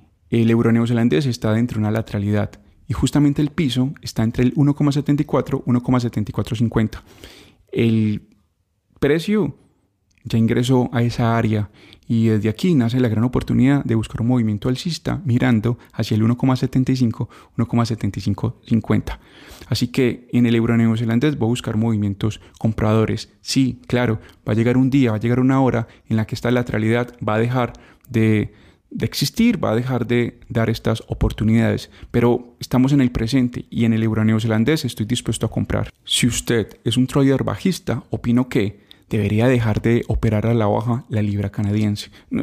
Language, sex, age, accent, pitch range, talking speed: Spanish, male, 20-39, Colombian, 110-125 Hz, 165 wpm